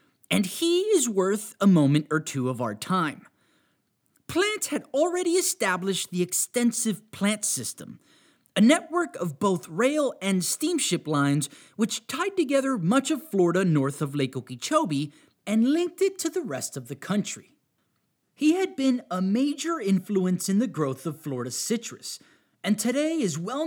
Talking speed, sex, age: 155 wpm, male, 30-49